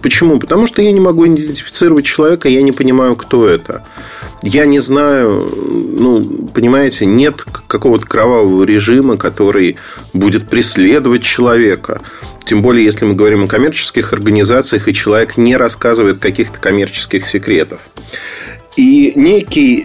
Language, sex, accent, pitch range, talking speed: Russian, male, native, 105-145 Hz, 130 wpm